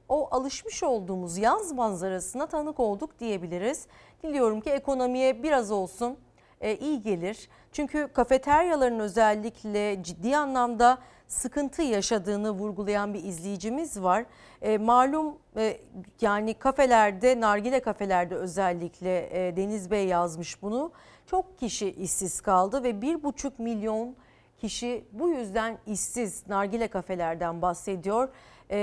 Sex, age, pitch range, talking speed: female, 40-59, 200-260 Hz, 105 wpm